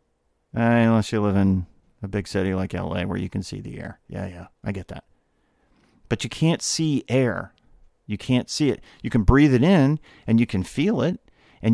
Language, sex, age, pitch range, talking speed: English, male, 40-59, 100-125 Hz, 210 wpm